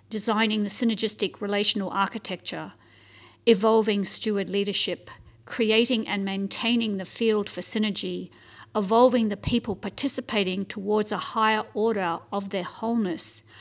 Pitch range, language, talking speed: 190-225 Hz, English, 115 wpm